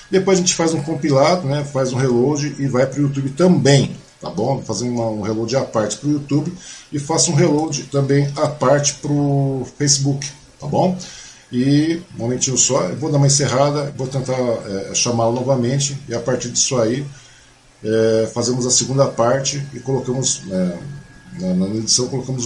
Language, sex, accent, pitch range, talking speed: Portuguese, male, Brazilian, 125-150 Hz, 180 wpm